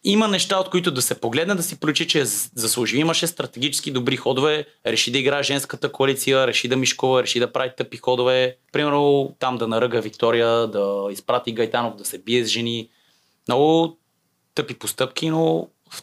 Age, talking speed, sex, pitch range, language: 30-49, 180 wpm, male, 110-130 Hz, Bulgarian